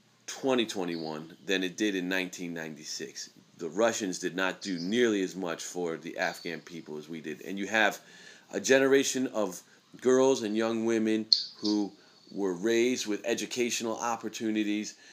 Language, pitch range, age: English, 95-125 Hz, 30-49